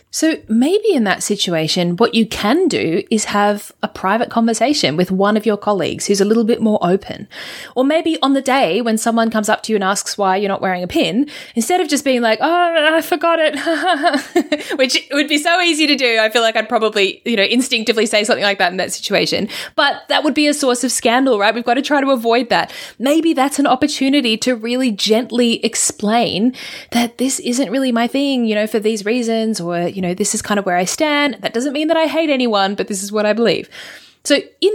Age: 20-39